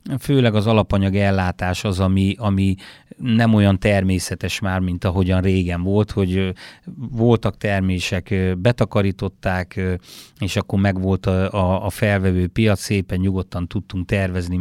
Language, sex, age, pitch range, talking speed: Hungarian, male, 30-49, 95-110 Hz, 125 wpm